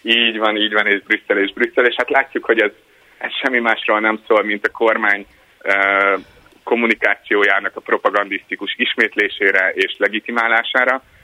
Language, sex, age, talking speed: Hungarian, male, 30-49, 145 wpm